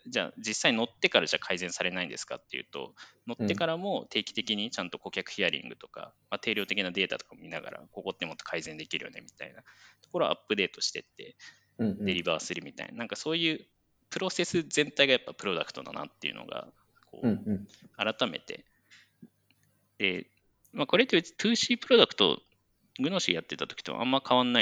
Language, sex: Japanese, male